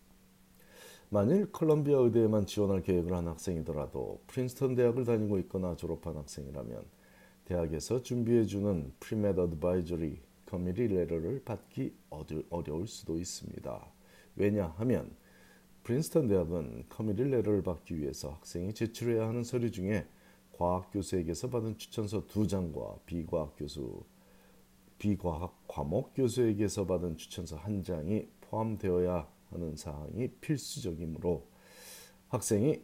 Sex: male